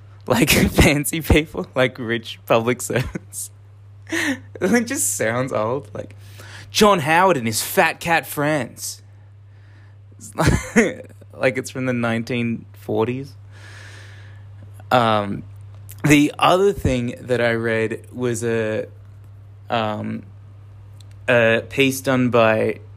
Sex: male